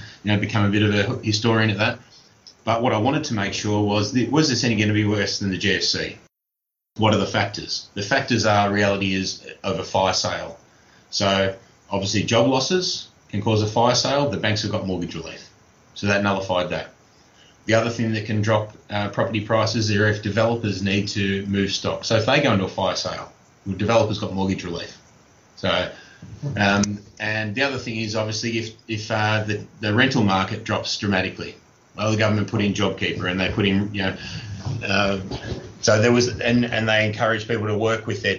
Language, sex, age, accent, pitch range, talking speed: English, male, 30-49, Australian, 100-115 Hz, 205 wpm